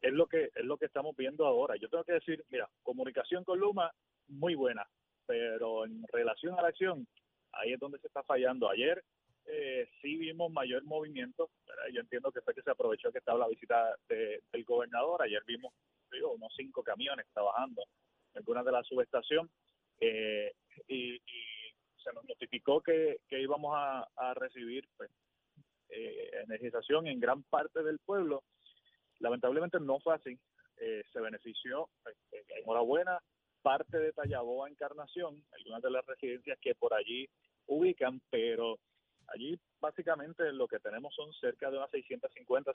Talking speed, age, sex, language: 165 wpm, 30-49, male, Spanish